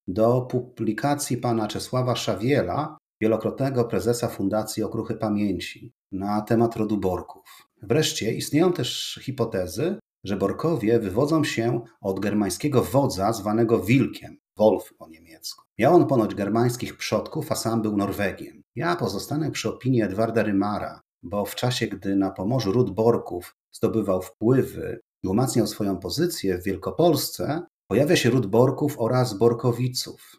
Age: 40-59